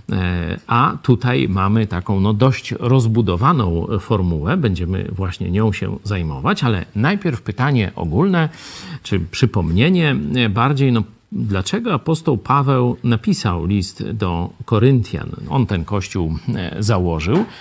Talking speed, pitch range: 110 wpm, 105-150 Hz